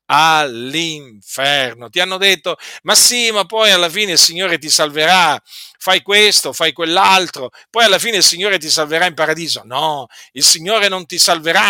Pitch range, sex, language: 150-210 Hz, male, Italian